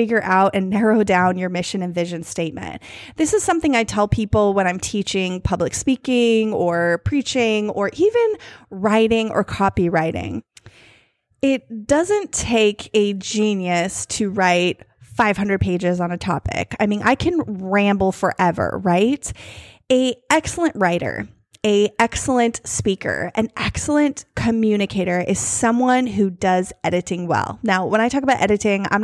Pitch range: 185-265 Hz